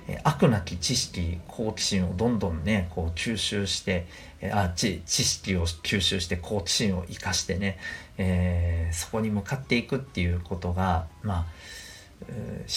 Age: 50-69